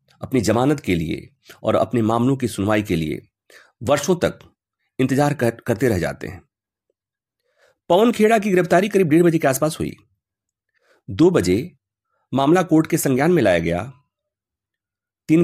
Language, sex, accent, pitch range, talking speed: English, male, Indian, 105-170 Hz, 150 wpm